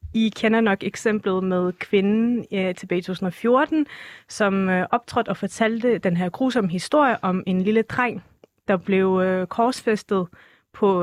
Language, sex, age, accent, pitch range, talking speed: Danish, female, 30-49, native, 185-230 Hz, 150 wpm